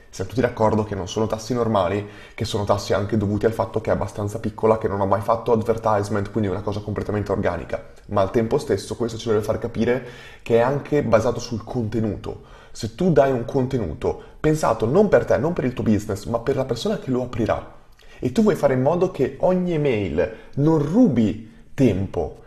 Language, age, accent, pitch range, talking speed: Italian, 20-39, native, 100-125 Hz, 210 wpm